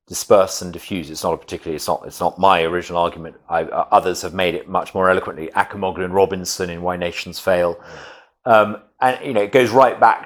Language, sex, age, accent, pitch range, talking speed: English, male, 40-59, British, 95-130 Hz, 210 wpm